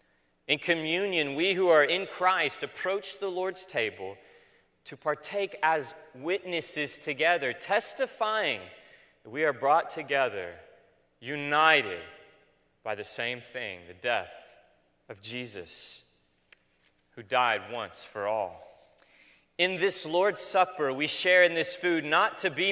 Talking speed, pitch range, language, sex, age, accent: 125 wpm, 130-185 Hz, English, male, 30-49, American